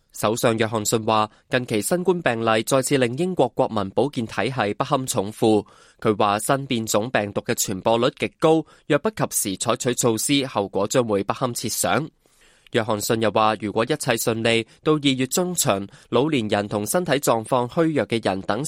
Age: 20-39